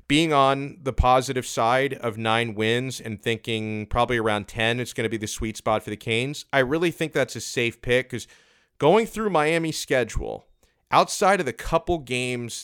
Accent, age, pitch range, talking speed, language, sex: American, 30-49, 105-135 Hz, 190 wpm, English, male